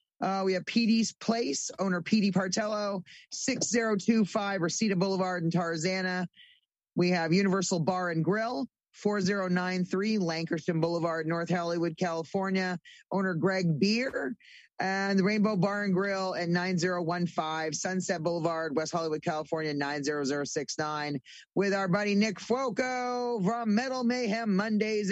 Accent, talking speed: American, 120 wpm